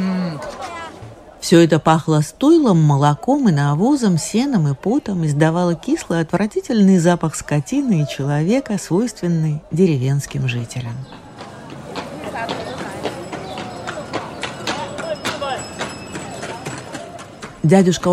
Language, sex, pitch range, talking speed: Russian, female, 155-225 Hz, 70 wpm